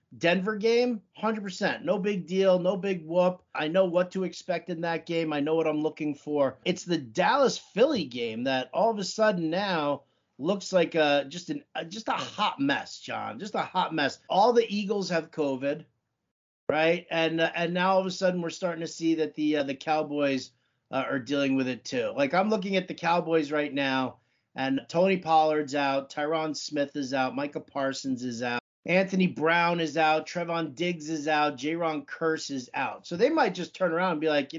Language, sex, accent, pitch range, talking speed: English, male, American, 150-190 Hz, 205 wpm